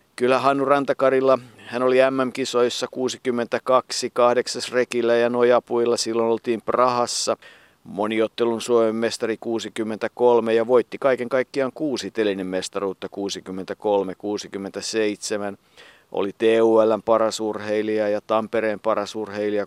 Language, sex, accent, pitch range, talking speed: Finnish, male, native, 105-125 Hz, 100 wpm